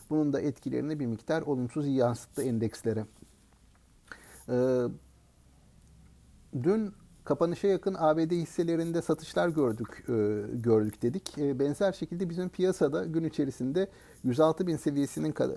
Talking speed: 100 wpm